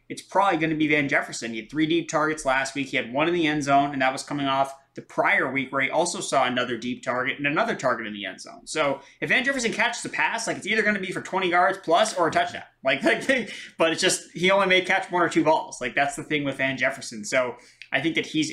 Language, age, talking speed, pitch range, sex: English, 20-39, 285 wpm, 130-160 Hz, male